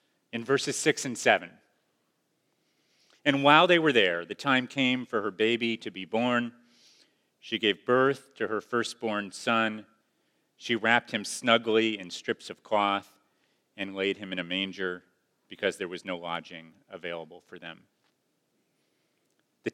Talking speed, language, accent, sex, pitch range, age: 150 wpm, English, American, male, 105-140 Hz, 40-59